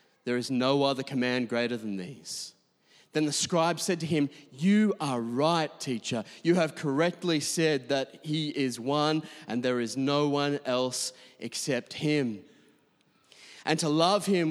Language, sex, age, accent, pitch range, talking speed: English, male, 30-49, Australian, 135-185 Hz, 155 wpm